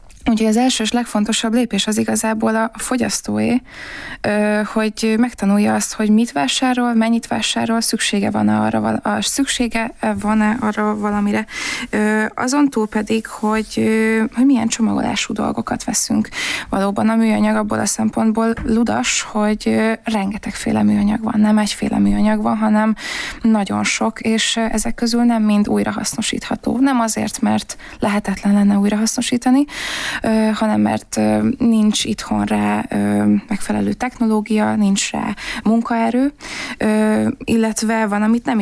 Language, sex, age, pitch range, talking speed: Hungarian, female, 20-39, 210-230 Hz, 130 wpm